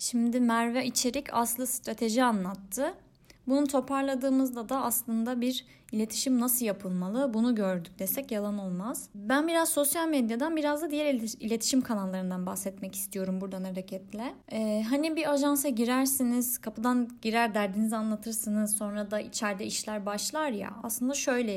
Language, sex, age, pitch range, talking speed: Turkish, female, 30-49, 195-260 Hz, 135 wpm